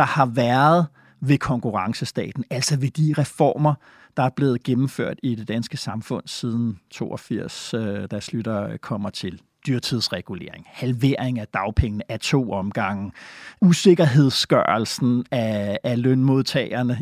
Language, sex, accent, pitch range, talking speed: Danish, male, native, 120-160 Hz, 115 wpm